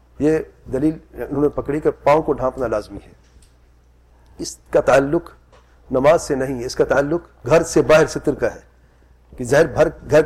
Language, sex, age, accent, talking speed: English, male, 40-59, Indian, 180 wpm